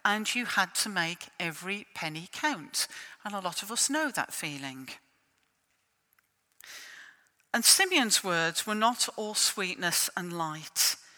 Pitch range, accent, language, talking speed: 165-215 Hz, British, English, 135 wpm